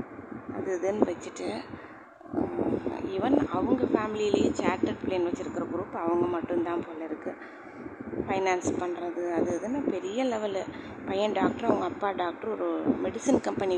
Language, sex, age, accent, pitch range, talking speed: Tamil, female, 20-39, native, 175-260 Hz, 120 wpm